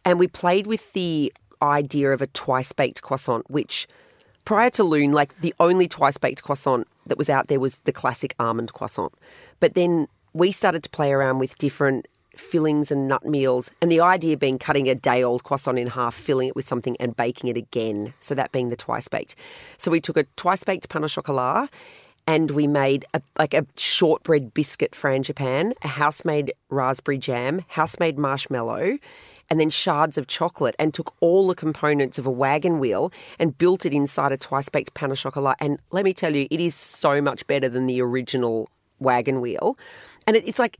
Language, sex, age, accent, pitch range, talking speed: English, female, 30-49, Australian, 130-170 Hz, 190 wpm